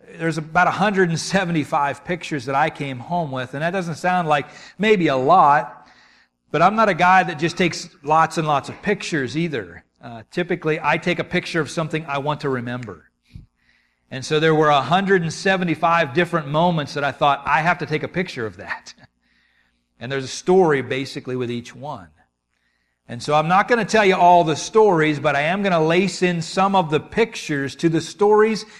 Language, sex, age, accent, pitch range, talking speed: English, male, 40-59, American, 140-180 Hz, 195 wpm